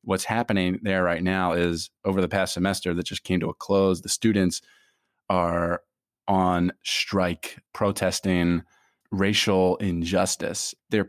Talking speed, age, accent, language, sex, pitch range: 135 wpm, 20-39, American, English, male, 90-115 Hz